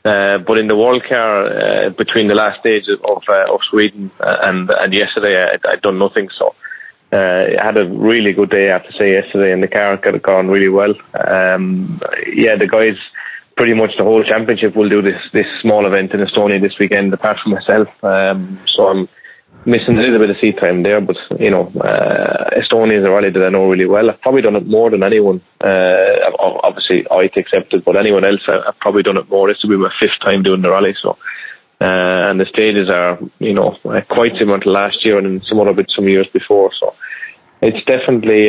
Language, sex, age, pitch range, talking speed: English, male, 20-39, 95-110 Hz, 220 wpm